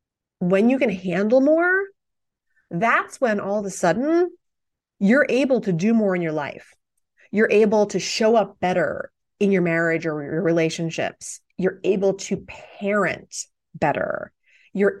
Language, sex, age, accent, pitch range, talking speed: English, female, 30-49, American, 180-235 Hz, 150 wpm